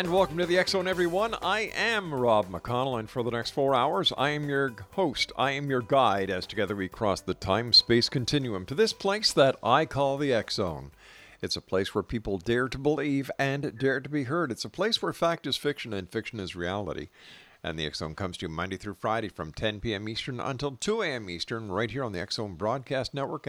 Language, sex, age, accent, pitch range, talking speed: English, male, 50-69, American, 100-135 Hz, 220 wpm